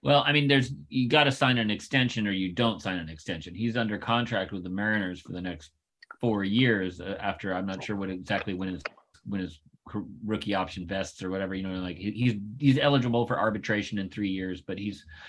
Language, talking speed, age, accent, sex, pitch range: English, 210 wpm, 30-49, American, male, 90-115 Hz